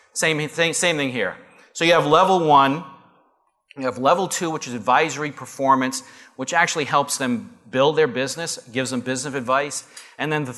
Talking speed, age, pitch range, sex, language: 180 wpm, 40-59, 130-160 Hz, male, English